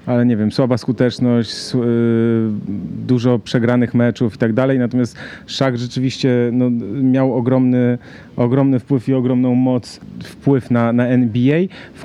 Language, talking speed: Polish, 135 wpm